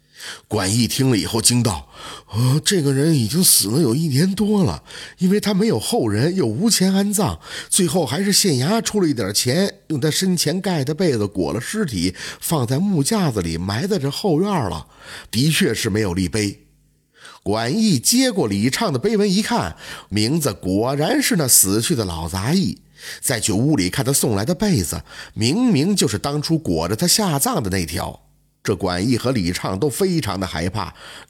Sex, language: male, Chinese